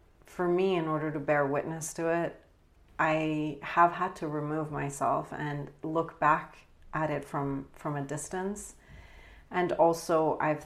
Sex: female